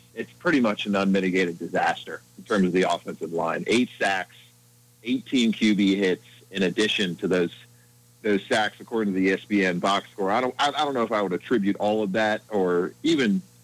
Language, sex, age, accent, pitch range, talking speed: English, male, 40-59, American, 90-110 Hz, 190 wpm